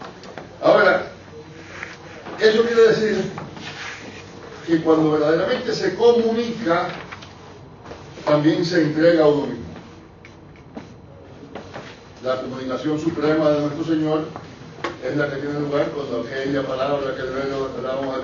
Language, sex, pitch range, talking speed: English, male, 130-160 Hz, 105 wpm